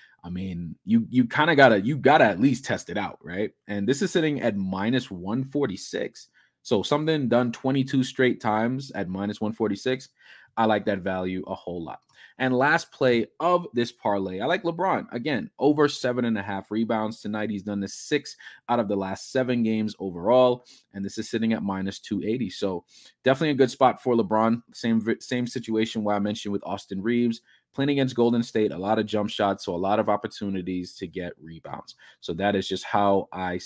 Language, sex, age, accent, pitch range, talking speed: English, male, 20-39, American, 100-130 Hz, 200 wpm